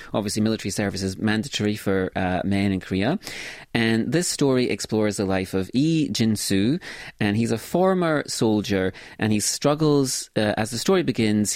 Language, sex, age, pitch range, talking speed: English, male, 30-49, 95-120 Hz, 165 wpm